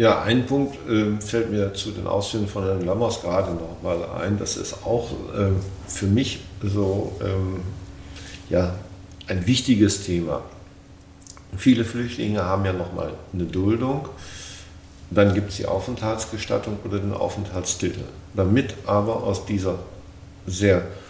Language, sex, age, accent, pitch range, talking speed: German, male, 50-69, German, 95-115 Hz, 140 wpm